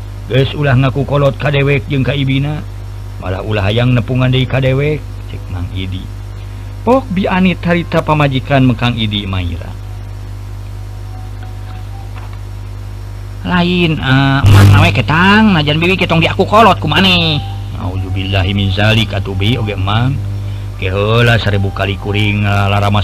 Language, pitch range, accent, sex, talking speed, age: Indonesian, 100-135 Hz, native, male, 125 wpm, 50-69